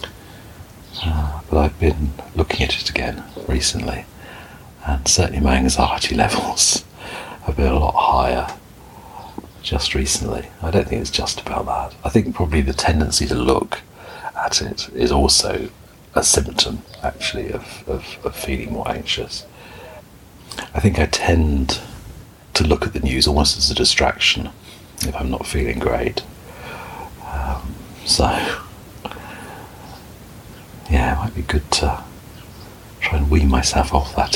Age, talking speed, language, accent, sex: 50-69, 140 wpm, English, British, male